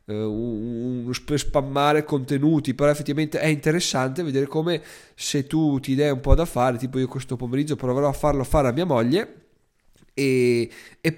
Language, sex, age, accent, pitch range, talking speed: Italian, male, 20-39, native, 125-155 Hz, 170 wpm